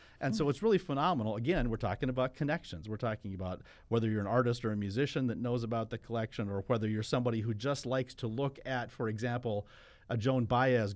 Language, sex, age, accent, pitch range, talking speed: English, male, 40-59, American, 105-130 Hz, 220 wpm